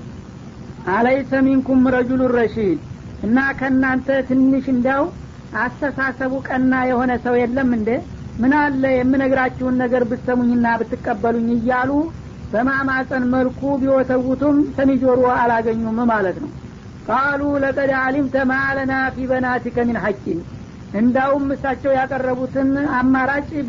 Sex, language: female, Amharic